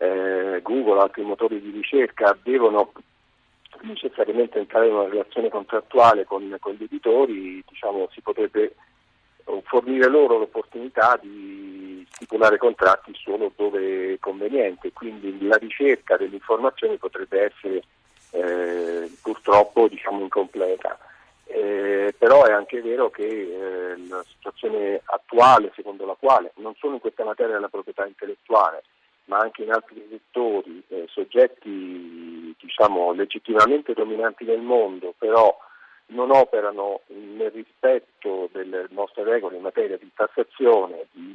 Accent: native